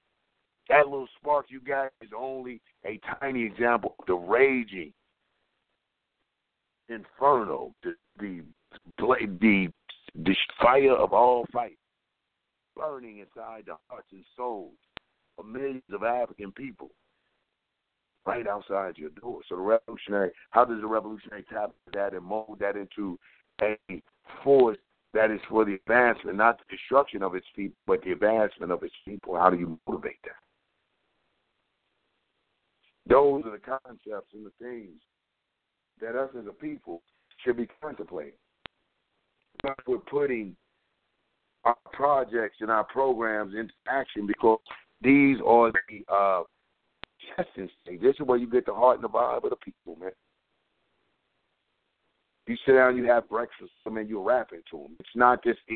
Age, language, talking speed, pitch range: 60-79, English, 145 wpm, 105-130 Hz